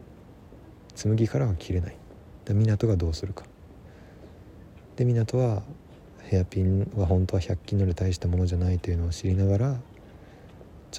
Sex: male